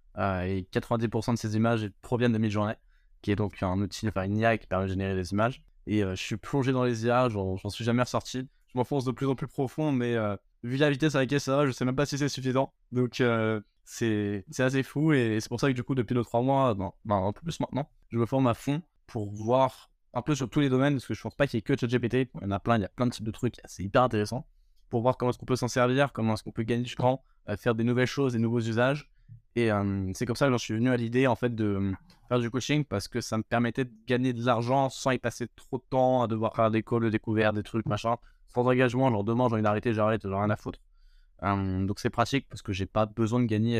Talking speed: 290 wpm